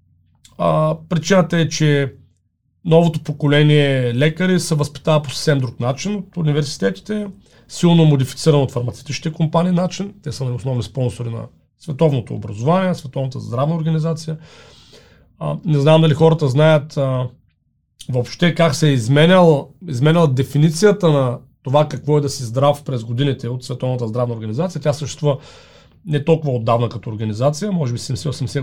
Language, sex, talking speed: Bulgarian, male, 145 wpm